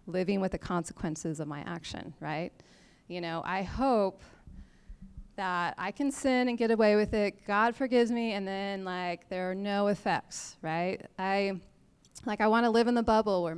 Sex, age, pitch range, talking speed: female, 30-49, 180-225 Hz, 185 wpm